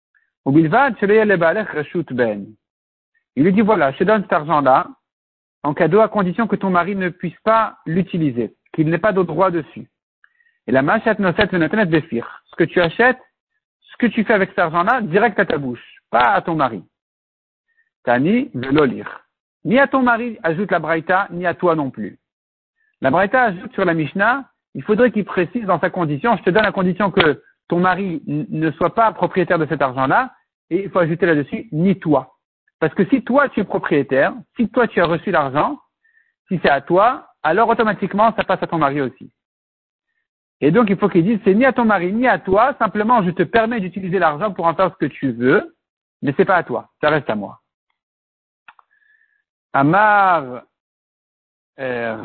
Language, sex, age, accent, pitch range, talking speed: French, male, 50-69, French, 165-230 Hz, 190 wpm